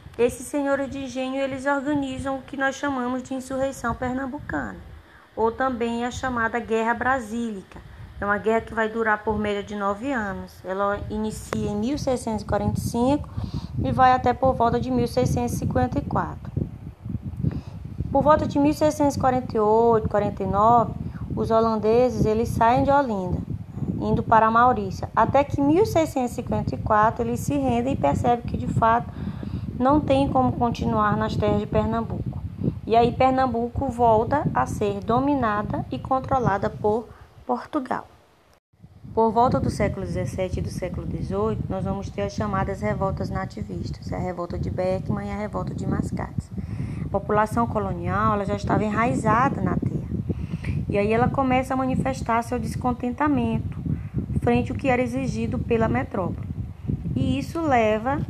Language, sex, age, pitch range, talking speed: Portuguese, female, 20-39, 215-265 Hz, 140 wpm